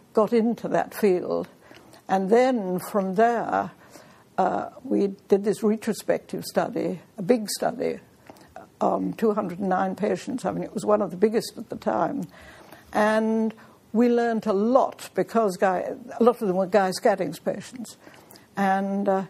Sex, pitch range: female, 190-225 Hz